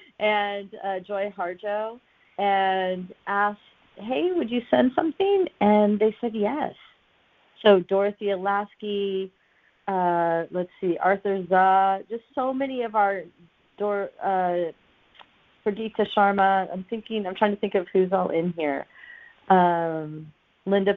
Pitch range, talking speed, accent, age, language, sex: 180-225 Hz, 130 wpm, American, 40-59, English, female